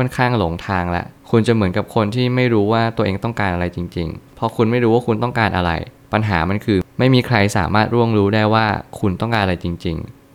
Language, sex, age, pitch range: Thai, male, 20-39, 95-120 Hz